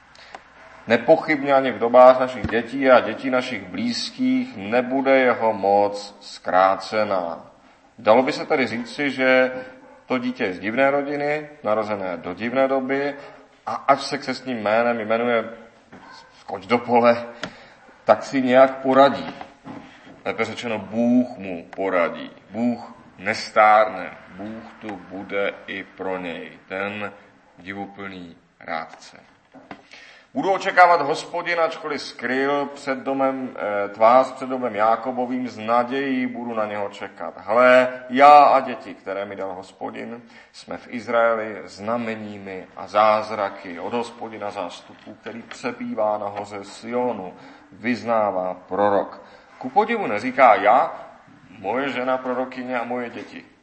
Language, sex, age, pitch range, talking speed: Czech, male, 40-59, 100-130 Hz, 125 wpm